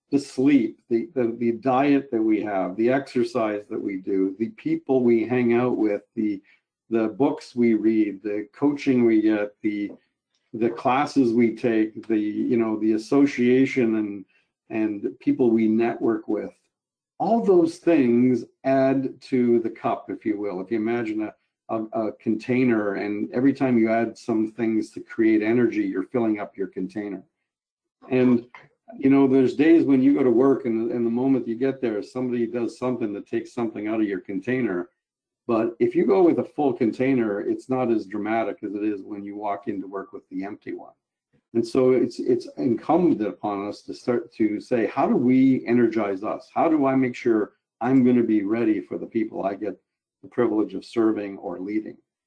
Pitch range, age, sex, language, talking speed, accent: 110-135 Hz, 50-69, male, English, 190 wpm, American